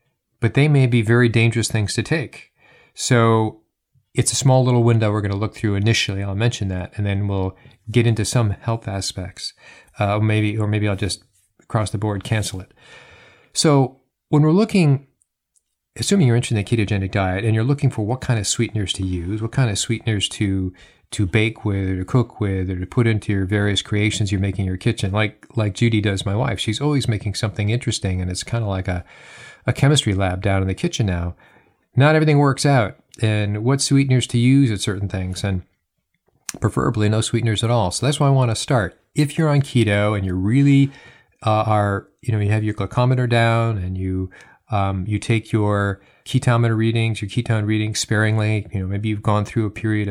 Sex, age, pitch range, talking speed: male, 40-59, 100-120 Hz, 205 wpm